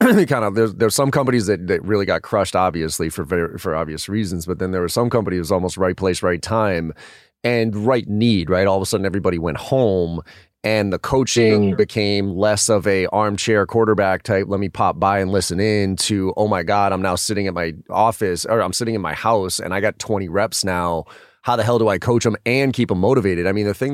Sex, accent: male, American